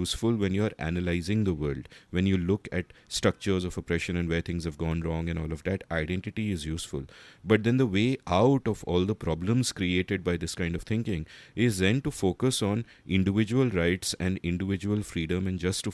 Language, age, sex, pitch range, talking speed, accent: English, 30-49, male, 85-110 Hz, 205 wpm, Indian